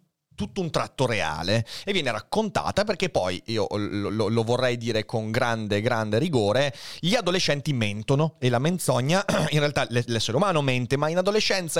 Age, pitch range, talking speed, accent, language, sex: 30-49, 110-155 Hz, 165 wpm, native, Italian, male